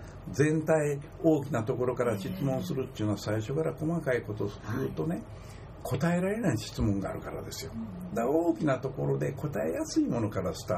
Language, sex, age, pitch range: Japanese, male, 60-79, 110-175 Hz